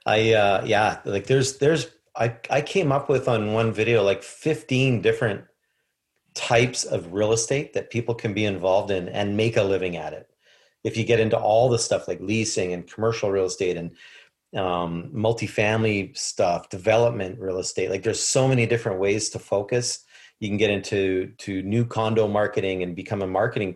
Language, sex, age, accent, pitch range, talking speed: English, male, 40-59, American, 100-120 Hz, 185 wpm